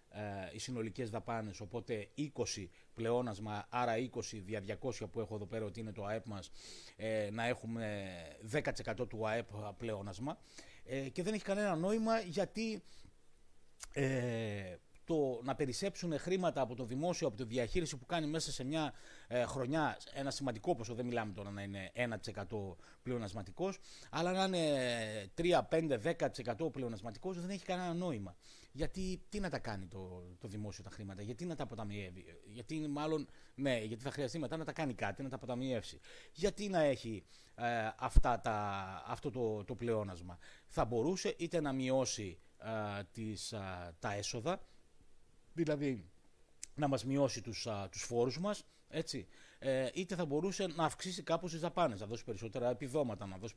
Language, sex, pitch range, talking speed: Greek, male, 105-155 Hz, 160 wpm